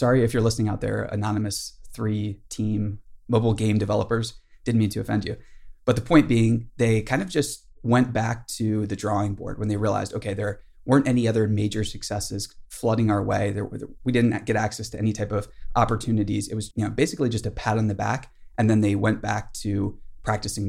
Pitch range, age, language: 105-120 Hz, 20-39, English